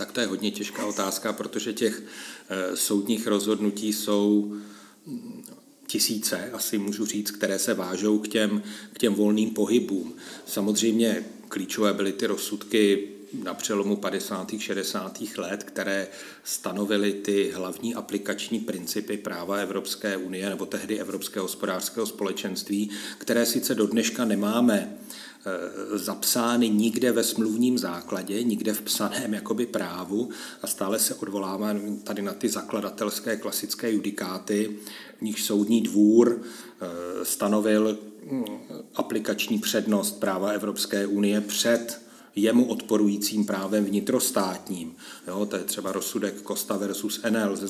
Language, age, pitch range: Czech, 40-59, 100-110 Hz